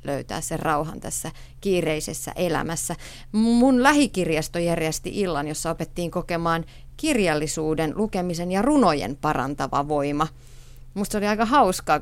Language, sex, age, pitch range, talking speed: Finnish, female, 30-49, 155-200 Hz, 115 wpm